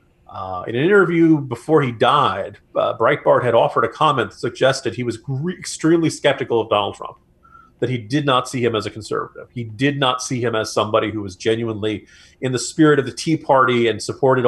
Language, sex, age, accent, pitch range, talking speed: English, male, 40-59, American, 110-140 Hz, 210 wpm